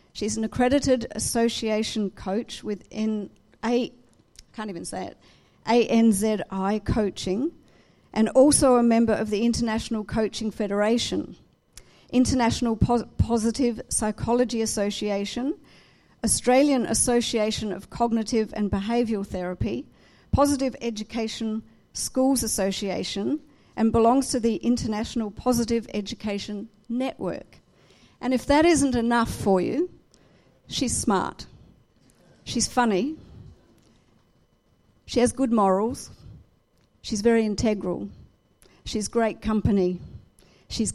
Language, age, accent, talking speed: English, 50-69, Australian, 100 wpm